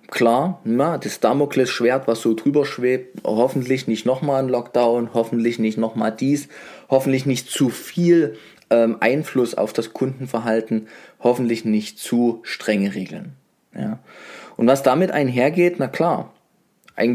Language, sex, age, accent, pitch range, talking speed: German, male, 20-39, German, 110-145 Hz, 135 wpm